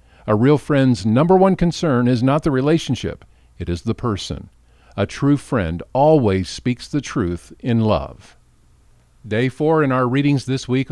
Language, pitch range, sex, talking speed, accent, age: English, 85-145 Hz, male, 165 wpm, American, 50-69